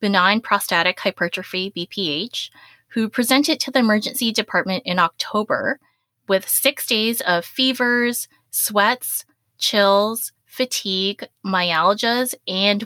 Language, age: English, 20-39